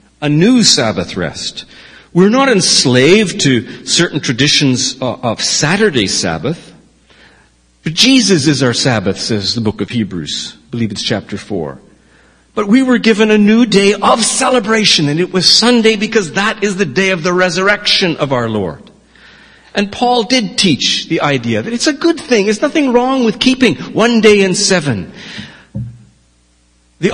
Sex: male